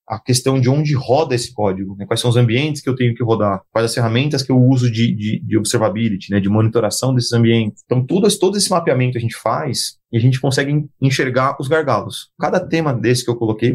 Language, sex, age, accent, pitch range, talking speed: Portuguese, male, 30-49, Brazilian, 115-145 Hz, 235 wpm